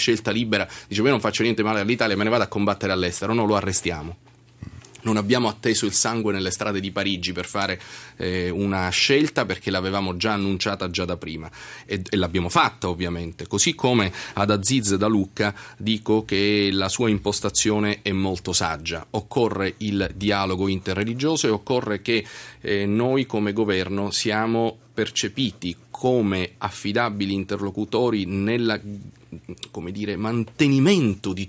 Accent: native